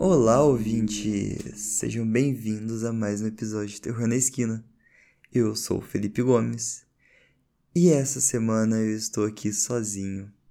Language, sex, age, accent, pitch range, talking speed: Portuguese, male, 20-39, Brazilian, 105-115 Hz, 135 wpm